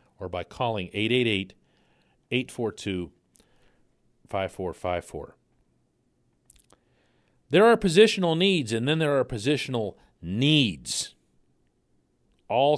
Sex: male